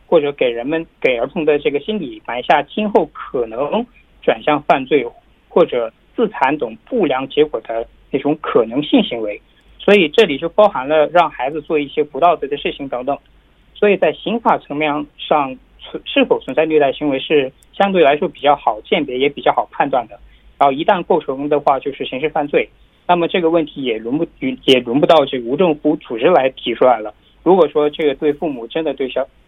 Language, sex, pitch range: Korean, male, 140-205 Hz